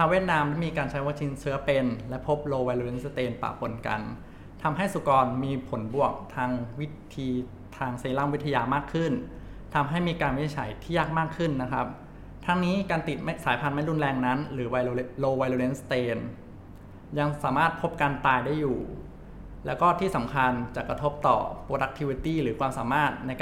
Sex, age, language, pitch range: male, 20-39, Thai, 125-150 Hz